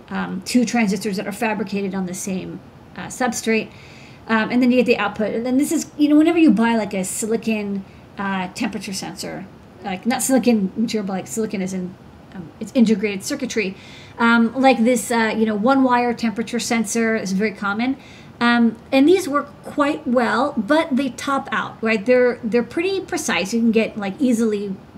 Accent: American